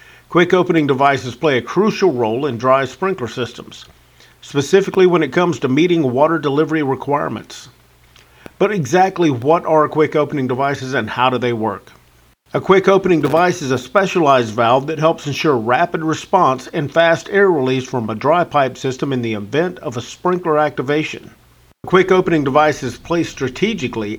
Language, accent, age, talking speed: English, American, 50-69, 165 wpm